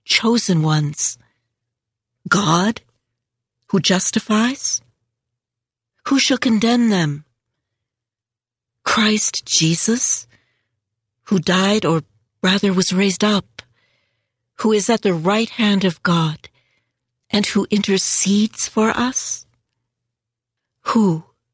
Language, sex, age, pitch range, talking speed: English, female, 60-79, 120-195 Hz, 90 wpm